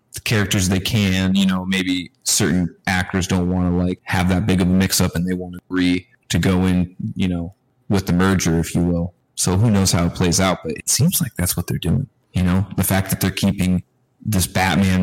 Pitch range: 85-95 Hz